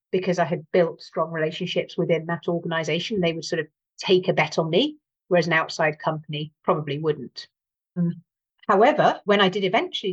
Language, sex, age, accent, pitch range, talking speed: English, female, 40-59, British, 160-190 Hz, 185 wpm